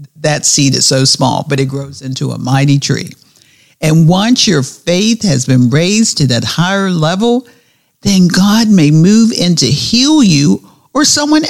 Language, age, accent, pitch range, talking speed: English, 50-69, American, 135-195 Hz, 170 wpm